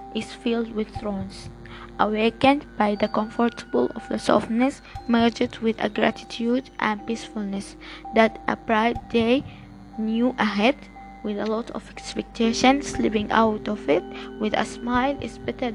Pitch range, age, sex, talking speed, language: 205-240 Hz, 20-39, female, 140 wpm, English